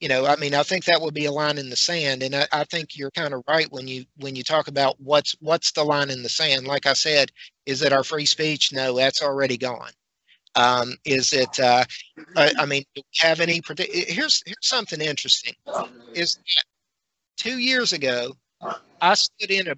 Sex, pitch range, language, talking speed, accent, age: male, 130-160 Hz, English, 215 wpm, American, 50-69